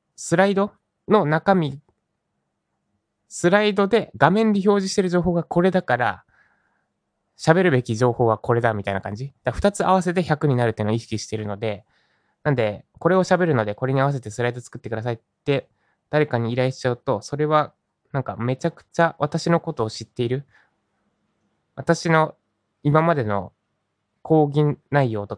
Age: 20-39